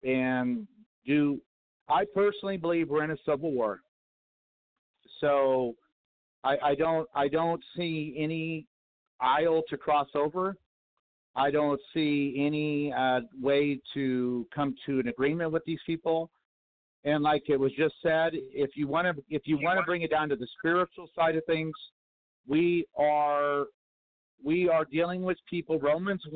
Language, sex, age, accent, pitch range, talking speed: English, male, 50-69, American, 140-170 Hz, 150 wpm